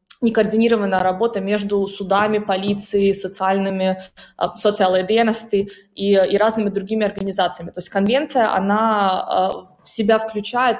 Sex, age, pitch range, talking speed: female, 20-39, 185-220 Hz, 105 wpm